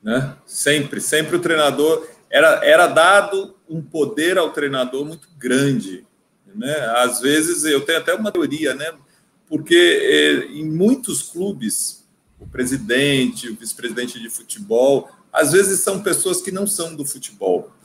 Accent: Brazilian